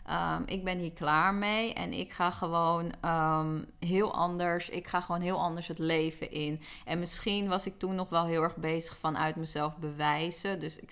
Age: 20-39